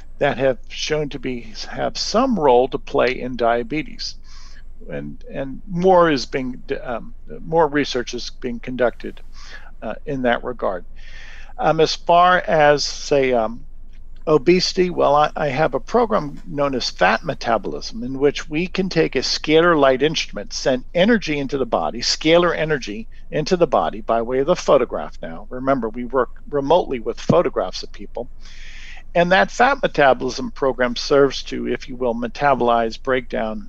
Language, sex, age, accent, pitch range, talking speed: English, male, 50-69, American, 120-155 Hz, 160 wpm